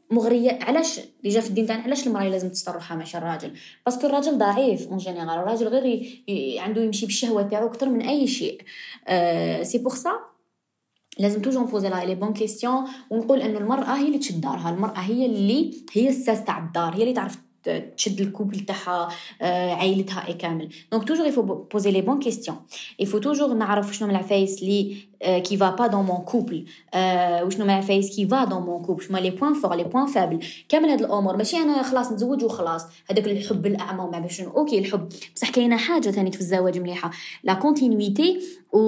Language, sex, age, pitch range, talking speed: Arabic, female, 20-39, 185-245 Hz, 190 wpm